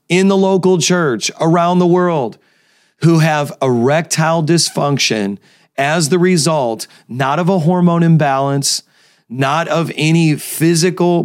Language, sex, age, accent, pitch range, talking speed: English, male, 30-49, American, 120-155 Hz, 125 wpm